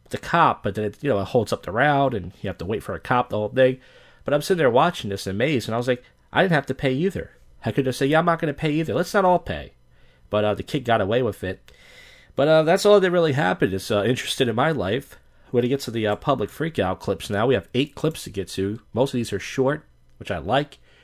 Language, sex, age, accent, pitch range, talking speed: English, male, 40-59, American, 105-160 Hz, 285 wpm